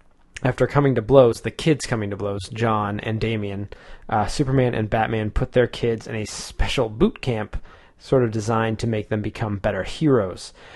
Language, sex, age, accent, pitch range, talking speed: English, male, 20-39, American, 110-130 Hz, 185 wpm